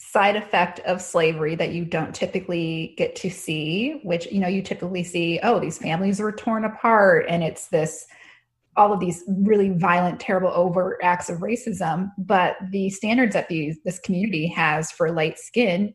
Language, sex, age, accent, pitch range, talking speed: English, female, 20-39, American, 170-210 Hz, 175 wpm